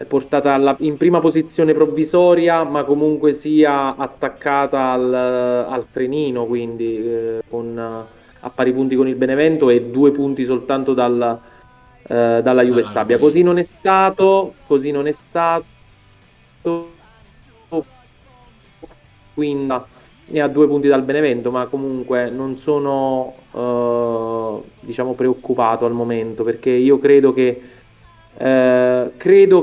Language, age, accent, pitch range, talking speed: Italian, 30-49, native, 125-150 Hz, 115 wpm